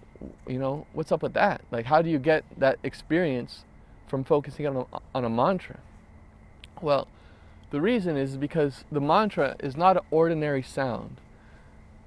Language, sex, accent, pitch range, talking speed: English, male, American, 105-150 Hz, 160 wpm